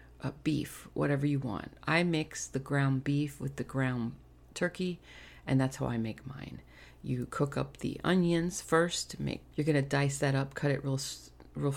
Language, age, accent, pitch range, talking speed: English, 40-59, American, 130-160 Hz, 190 wpm